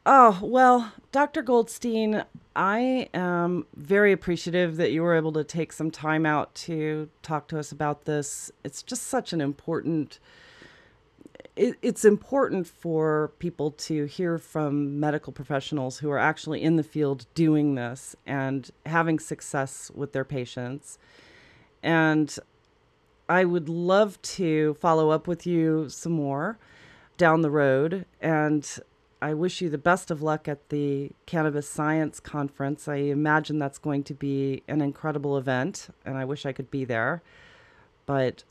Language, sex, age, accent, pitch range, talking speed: English, female, 40-59, American, 145-180 Hz, 150 wpm